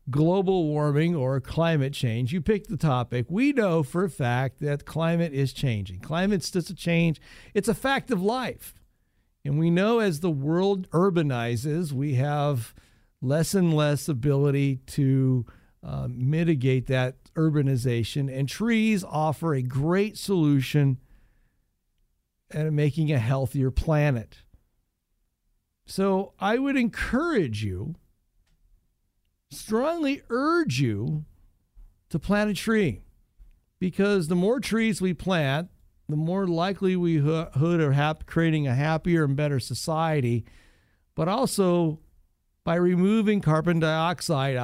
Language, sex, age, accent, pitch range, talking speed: English, male, 50-69, American, 130-185 Hz, 125 wpm